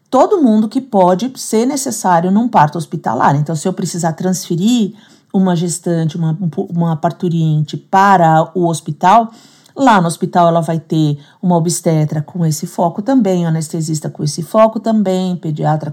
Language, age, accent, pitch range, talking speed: Portuguese, 50-69, Brazilian, 170-215 Hz, 150 wpm